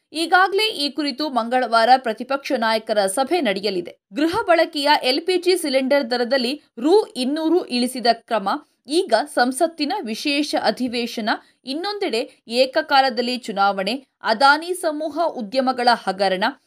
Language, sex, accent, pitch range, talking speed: Kannada, female, native, 240-320 Hz, 100 wpm